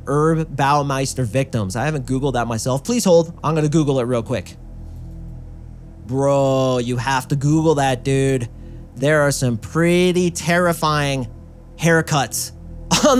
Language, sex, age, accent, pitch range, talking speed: English, male, 30-49, American, 125-155 Hz, 135 wpm